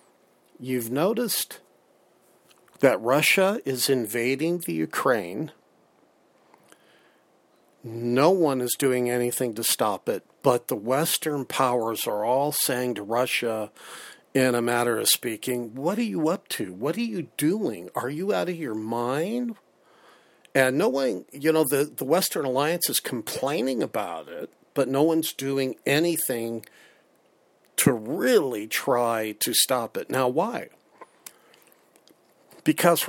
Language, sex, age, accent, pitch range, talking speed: English, male, 50-69, American, 120-155 Hz, 130 wpm